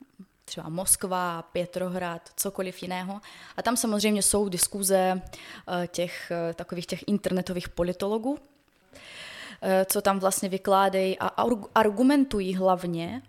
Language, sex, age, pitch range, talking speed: Czech, female, 20-39, 185-210 Hz, 115 wpm